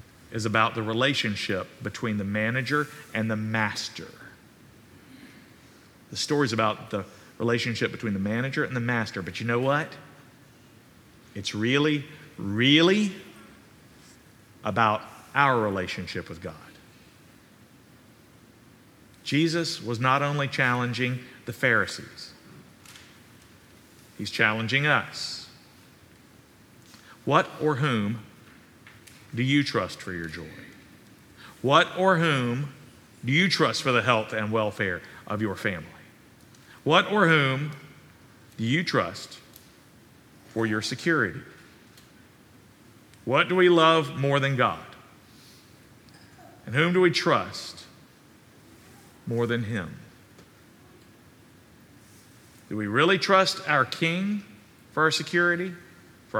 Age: 50-69